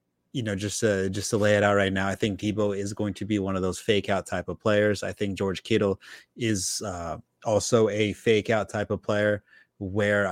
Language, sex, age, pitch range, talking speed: English, male, 30-49, 95-115 Hz, 235 wpm